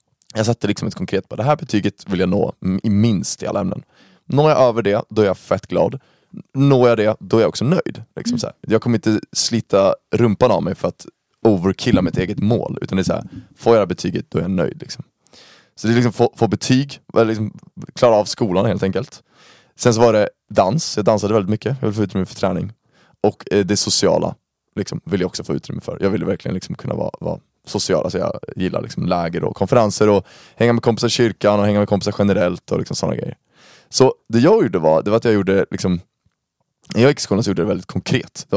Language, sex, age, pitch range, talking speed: Swedish, male, 20-39, 100-120 Hz, 235 wpm